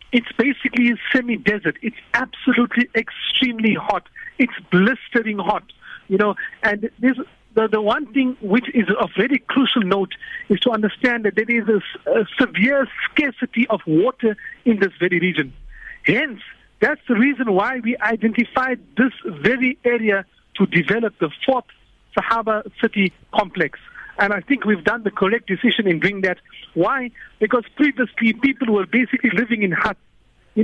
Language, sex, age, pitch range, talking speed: English, male, 50-69, 205-250 Hz, 155 wpm